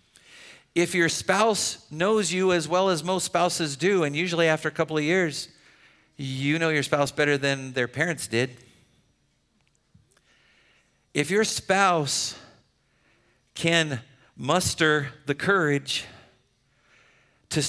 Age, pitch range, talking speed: 50-69, 125-170 Hz, 120 wpm